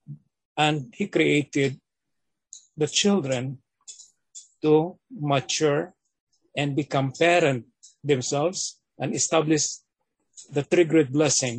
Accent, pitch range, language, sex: native, 135-170 Hz, Filipino, male